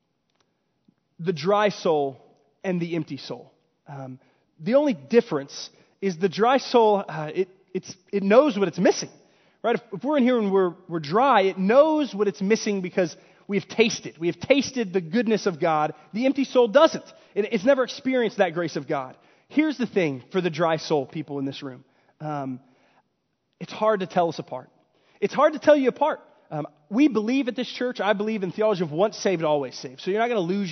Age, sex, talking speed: 30-49, male, 200 wpm